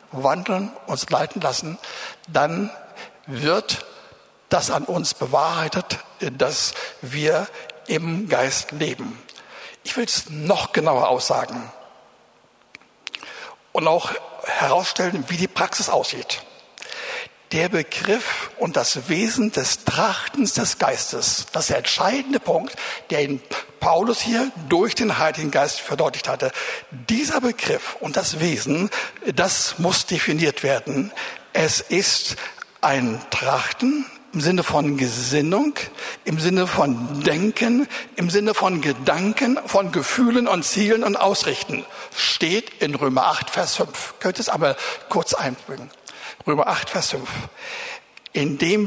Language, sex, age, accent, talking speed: German, male, 60-79, German, 120 wpm